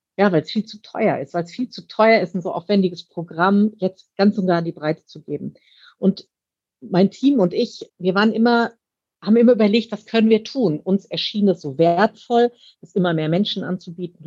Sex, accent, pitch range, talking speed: female, German, 170-210 Hz, 215 wpm